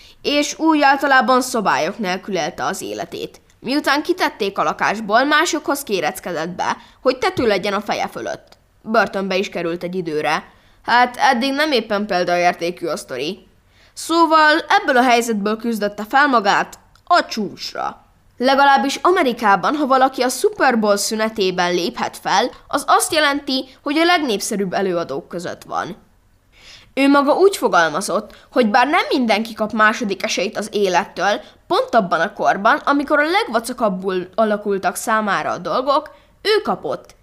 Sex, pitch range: female, 200-300 Hz